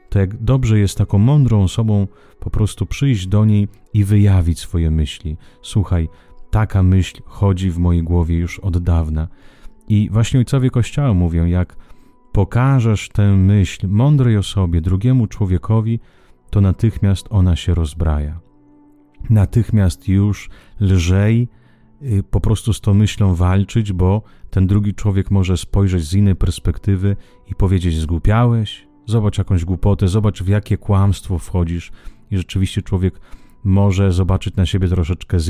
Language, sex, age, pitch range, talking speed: Italian, male, 30-49, 85-105 Hz, 140 wpm